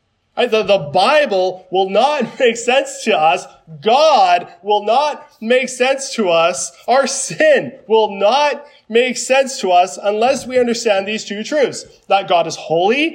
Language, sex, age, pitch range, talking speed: English, male, 20-39, 185-260 Hz, 155 wpm